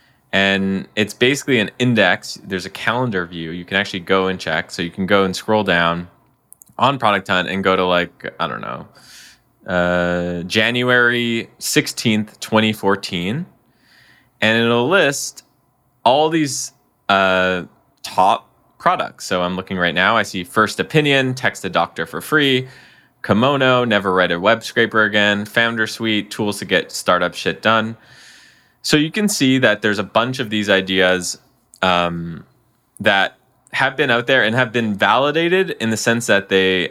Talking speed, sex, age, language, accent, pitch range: 160 wpm, male, 20-39, English, American, 95-125 Hz